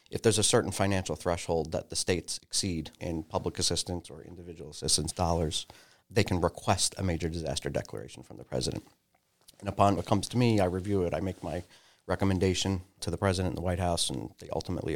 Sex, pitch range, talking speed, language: male, 90-110 Hz, 200 wpm, English